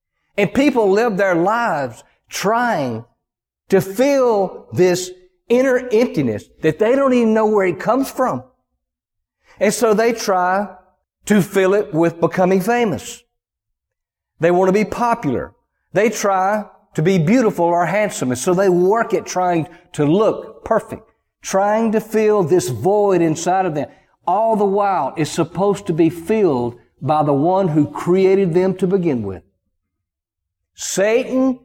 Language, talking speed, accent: English, 145 wpm, American